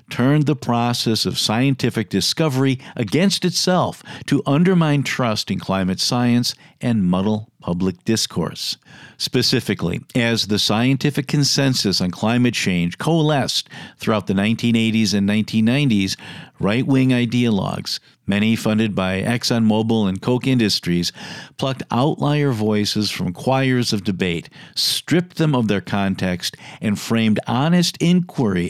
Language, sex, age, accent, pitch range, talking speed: English, male, 50-69, American, 105-140 Hz, 120 wpm